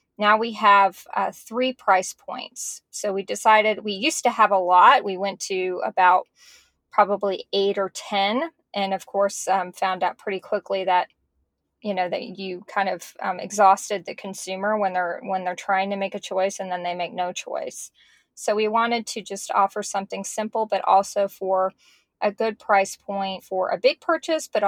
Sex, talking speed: female, 190 wpm